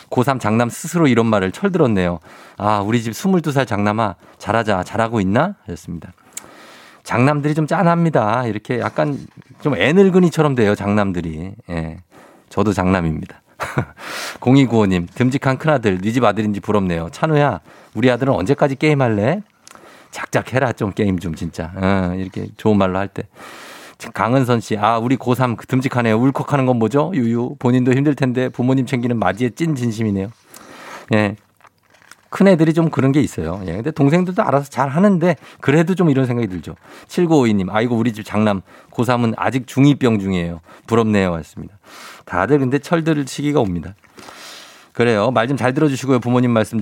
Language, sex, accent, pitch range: Korean, male, native, 105-145 Hz